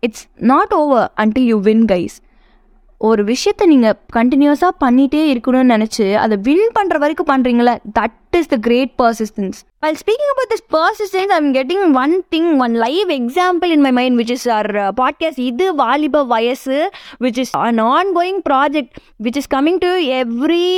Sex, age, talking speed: female, 20-39, 165 wpm